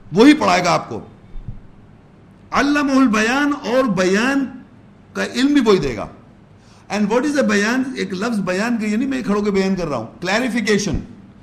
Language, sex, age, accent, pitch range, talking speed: English, male, 50-69, Indian, 190-235 Hz, 130 wpm